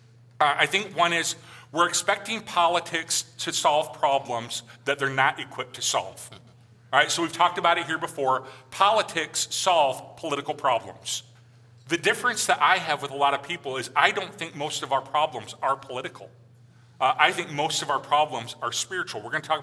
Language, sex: English, male